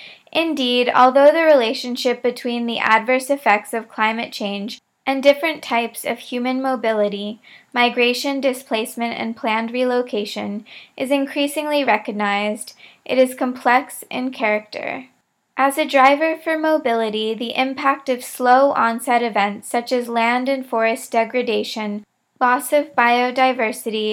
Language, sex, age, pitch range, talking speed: English, female, 20-39, 225-265 Hz, 120 wpm